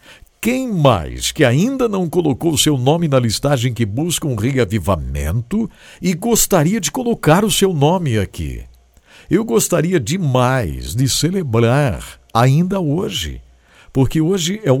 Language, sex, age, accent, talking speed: English, male, 60-79, Brazilian, 140 wpm